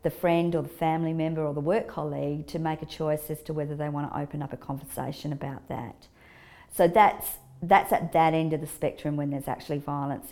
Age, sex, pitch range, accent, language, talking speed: 50-69, female, 145-165 Hz, Australian, English, 220 wpm